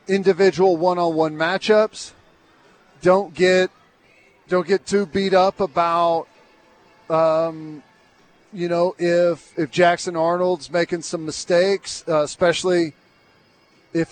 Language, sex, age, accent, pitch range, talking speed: English, male, 40-59, American, 165-195 Hz, 100 wpm